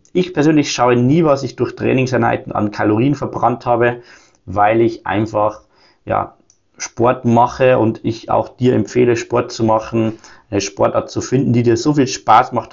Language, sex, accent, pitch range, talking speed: German, male, German, 110-140 Hz, 170 wpm